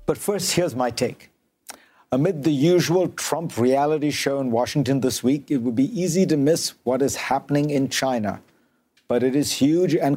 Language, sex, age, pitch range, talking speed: English, male, 50-69, 130-160 Hz, 185 wpm